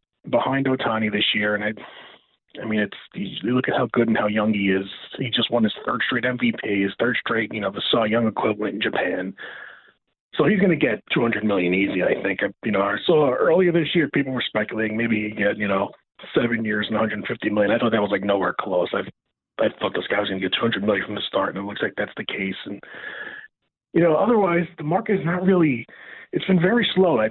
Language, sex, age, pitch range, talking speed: English, male, 30-49, 110-150 Hz, 240 wpm